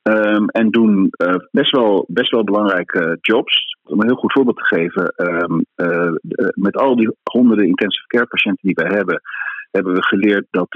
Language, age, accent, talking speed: Dutch, 40-59, Dutch, 190 wpm